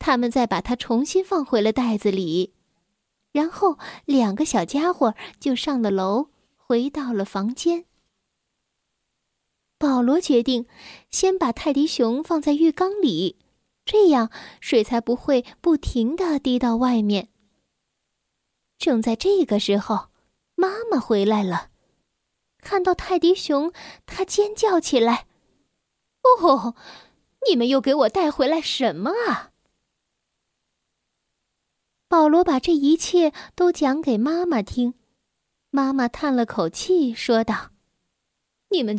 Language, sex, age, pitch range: Chinese, female, 10-29, 230-330 Hz